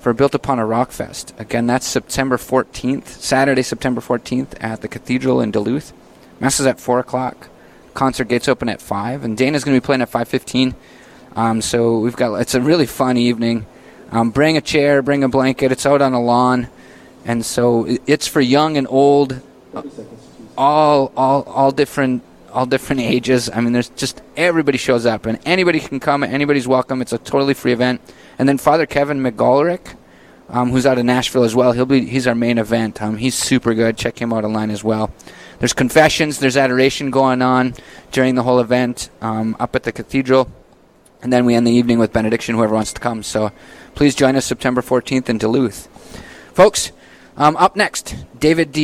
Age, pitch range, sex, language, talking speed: 20-39, 120-135 Hz, male, English, 195 wpm